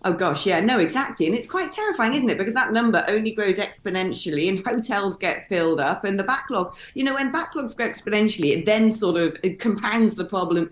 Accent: British